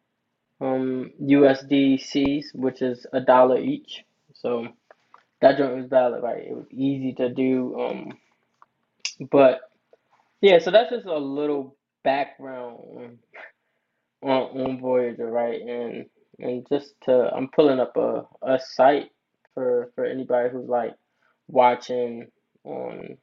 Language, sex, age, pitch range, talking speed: English, male, 20-39, 120-140 Hz, 125 wpm